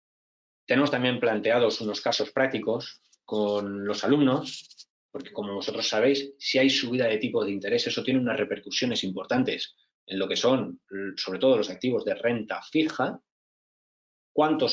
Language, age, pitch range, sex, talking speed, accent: Spanish, 30-49, 105-155 Hz, male, 150 wpm, Spanish